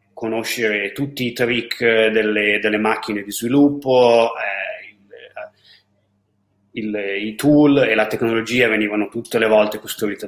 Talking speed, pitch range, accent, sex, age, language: 130 wpm, 105-125 Hz, native, male, 30-49, Italian